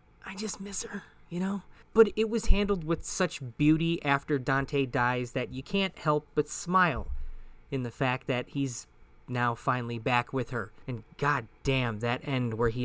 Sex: male